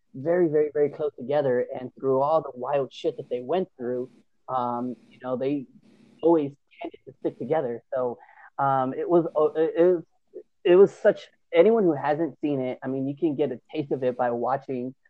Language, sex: English, male